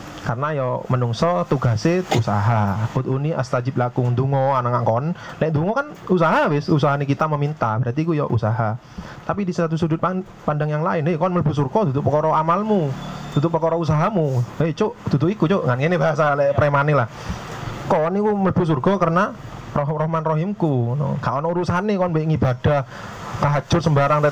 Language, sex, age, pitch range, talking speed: Indonesian, male, 30-49, 130-165 Hz, 185 wpm